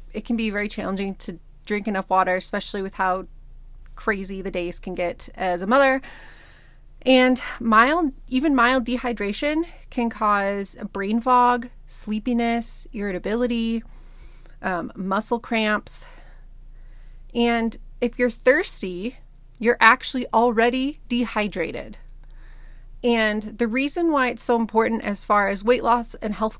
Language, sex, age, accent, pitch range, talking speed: English, female, 30-49, American, 200-245 Hz, 125 wpm